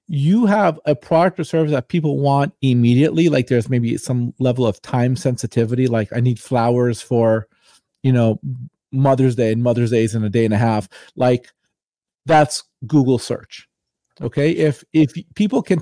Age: 40-59